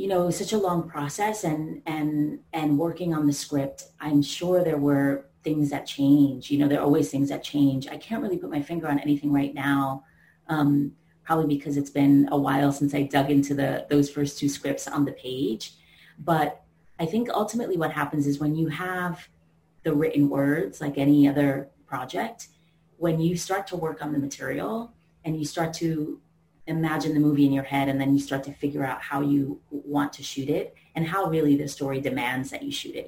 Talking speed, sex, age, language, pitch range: 210 wpm, female, 30-49, English, 140-160 Hz